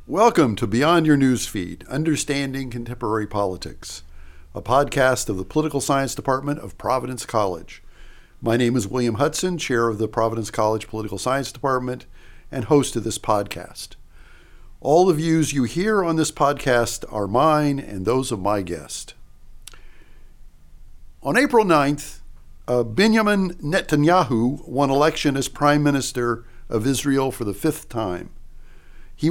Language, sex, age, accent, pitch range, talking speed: English, male, 50-69, American, 105-145 Hz, 140 wpm